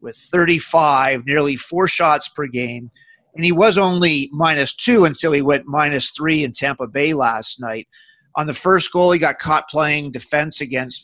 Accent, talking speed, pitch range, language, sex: American, 180 wpm, 140-170 Hz, English, male